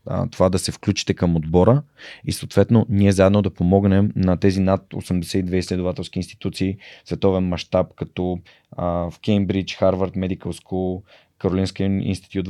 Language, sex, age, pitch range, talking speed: Bulgarian, male, 20-39, 90-100 Hz, 140 wpm